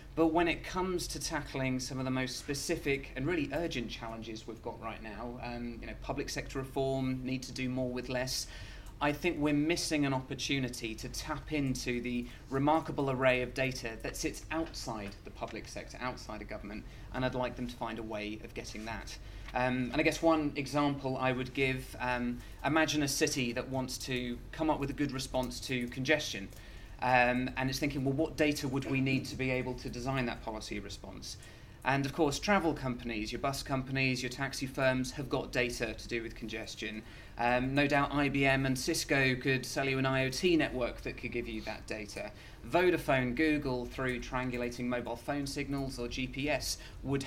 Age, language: 30-49, English